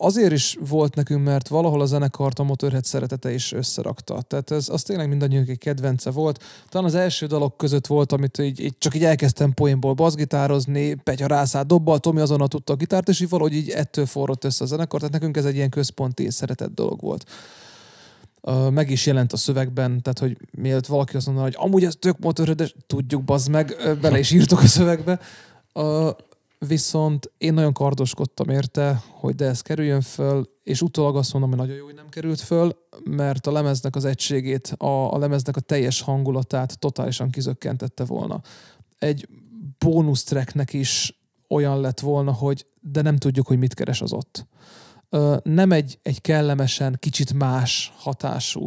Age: 30-49